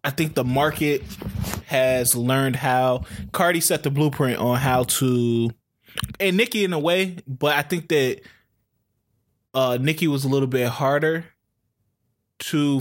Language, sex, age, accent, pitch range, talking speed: English, male, 20-39, American, 115-145 Hz, 145 wpm